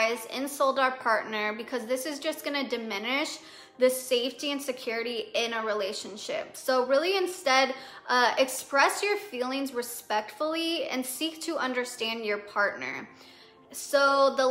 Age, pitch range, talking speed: 20-39, 240-285 Hz, 135 wpm